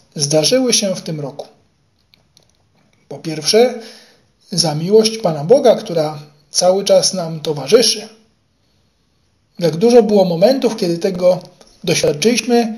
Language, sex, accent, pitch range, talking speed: Polish, male, native, 160-220 Hz, 110 wpm